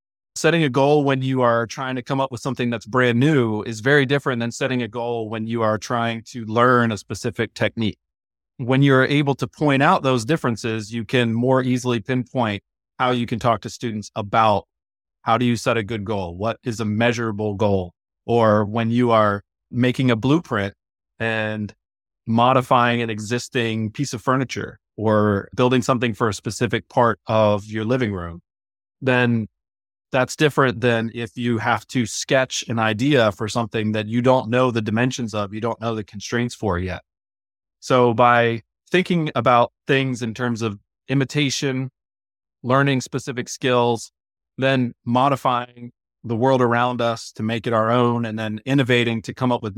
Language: English